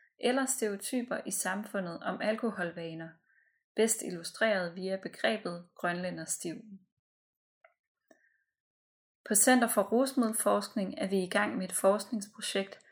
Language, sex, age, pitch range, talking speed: Danish, female, 30-49, 185-220 Hz, 100 wpm